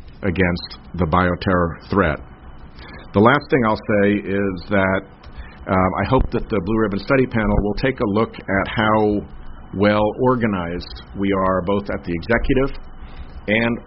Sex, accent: male, American